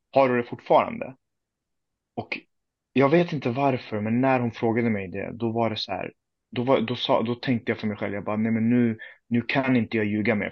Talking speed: 215 wpm